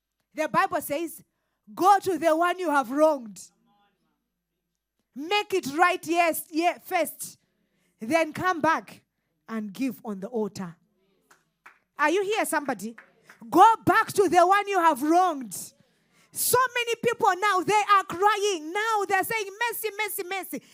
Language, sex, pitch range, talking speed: English, female, 280-420 Hz, 135 wpm